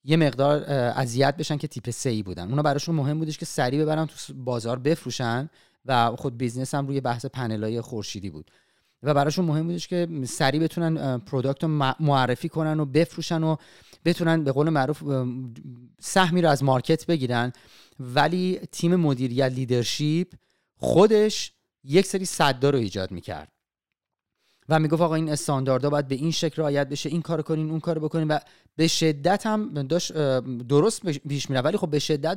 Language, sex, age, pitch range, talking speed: Persian, male, 30-49, 125-160 Hz, 165 wpm